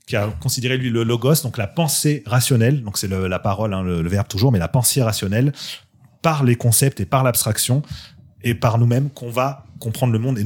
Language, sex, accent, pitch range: French, male, French, 90-120 Hz